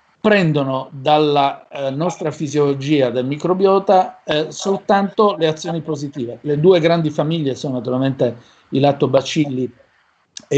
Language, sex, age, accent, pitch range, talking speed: Italian, male, 50-69, native, 130-155 Hz, 120 wpm